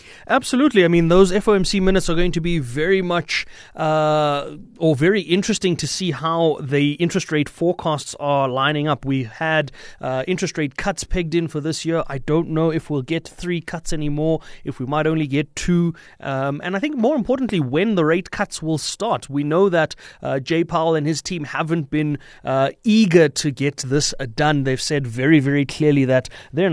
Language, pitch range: English, 140-180 Hz